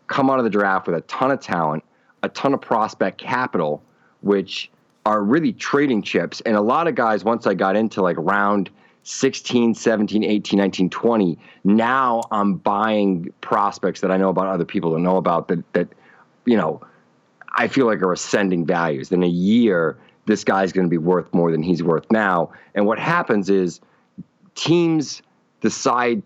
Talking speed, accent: 180 wpm, American